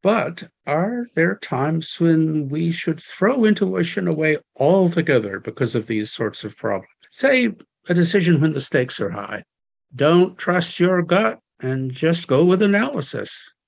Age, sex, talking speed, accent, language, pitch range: 60-79, male, 150 wpm, American, English, 125-175 Hz